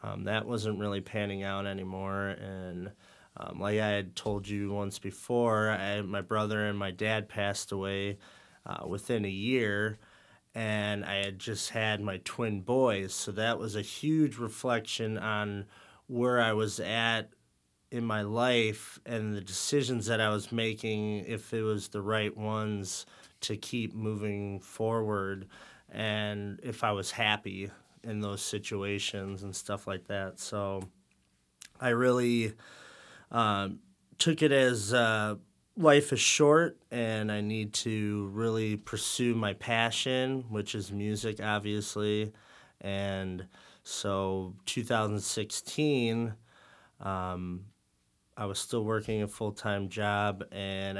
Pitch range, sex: 100-110 Hz, male